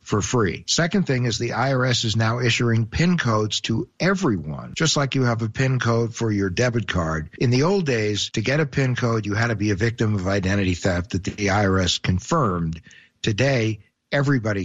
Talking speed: 200 wpm